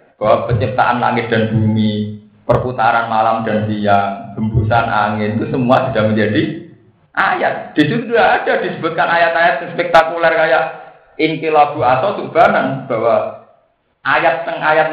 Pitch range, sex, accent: 110-145 Hz, male, native